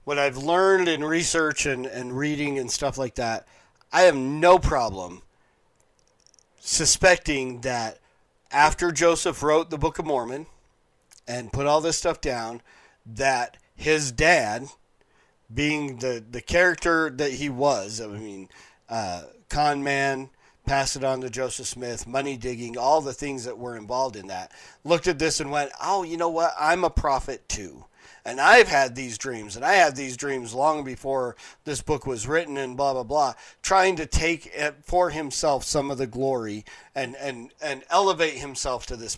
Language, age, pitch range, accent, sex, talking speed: English, 40-59, 125-155 Hz, American, male, 170 wpm